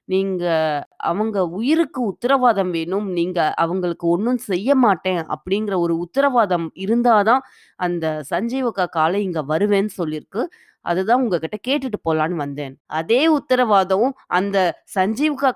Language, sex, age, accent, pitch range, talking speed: Tamil, female, 20-39, native, 175-245 Hz, 110 wpm